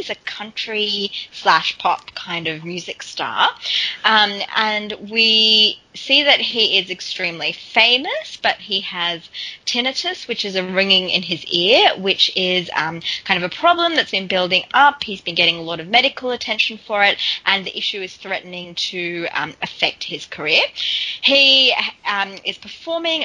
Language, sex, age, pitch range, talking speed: English, female, 20-39, 185-225 Hz, 165 wpm